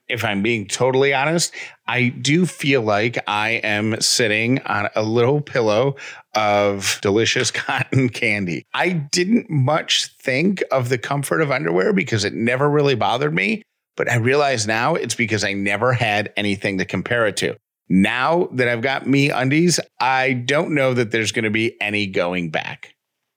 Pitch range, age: 110-145 Hz, 40-59